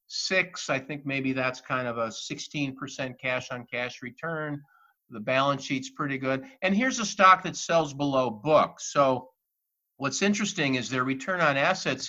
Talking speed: 170 wpm